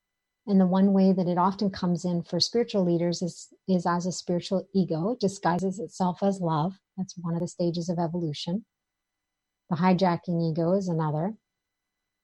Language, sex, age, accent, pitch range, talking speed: English, female, 50-69, American, 150-190 Hz, 170 wpm